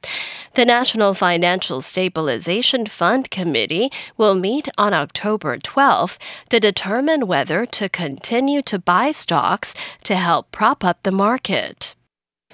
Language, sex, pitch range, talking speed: English, female, 175-255 Hz, 120 wpm